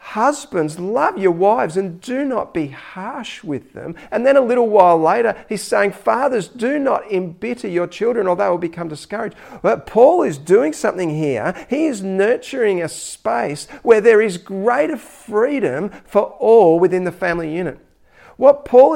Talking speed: 170 wpm